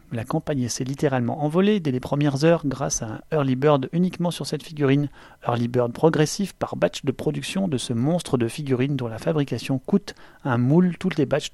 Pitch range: 125-155 Hz